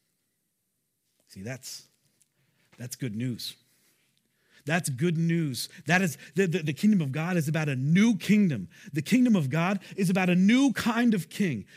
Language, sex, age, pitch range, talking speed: English, male, 40-59, 130-175 Hz, 165 wpm